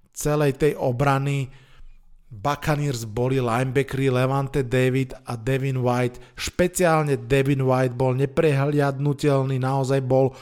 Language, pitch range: Slovak, 130-160 Hz